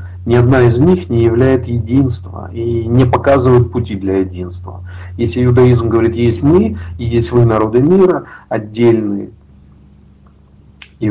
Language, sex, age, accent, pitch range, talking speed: Russian, male, 40-59, native, 95-130 Hz, 135 wpm